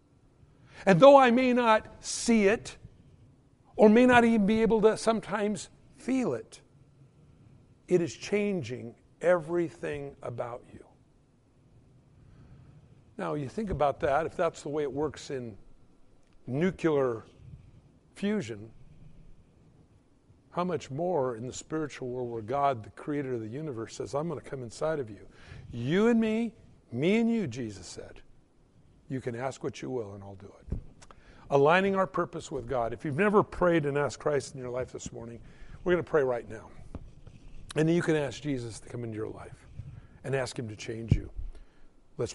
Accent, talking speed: American, 165 wpm